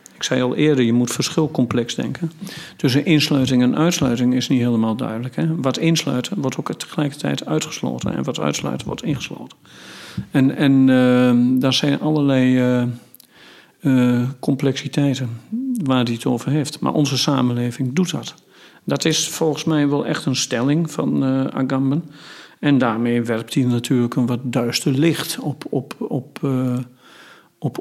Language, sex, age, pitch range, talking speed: Dutch, male, 50-69, 125-155 Hz, 155 wpm